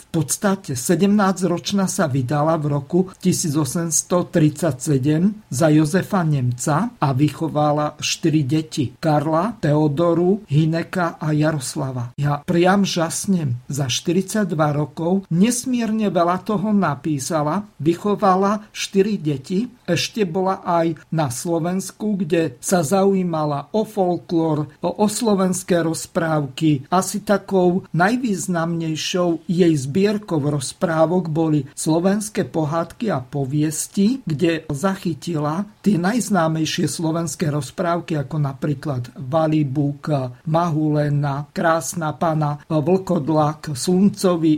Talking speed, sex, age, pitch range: 100 wpm, male, 50-69, 150-190 Hz